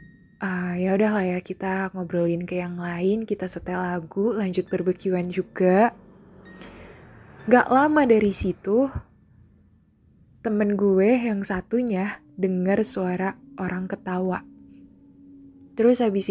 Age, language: 10-29, Indonesian